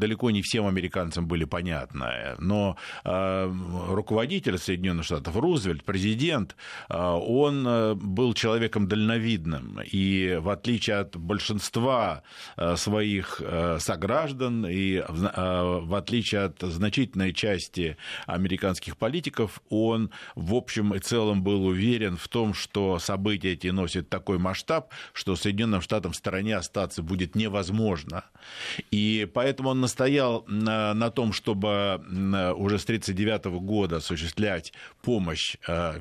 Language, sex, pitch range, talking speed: Russian, male, 90-110 Hz, 125 wpm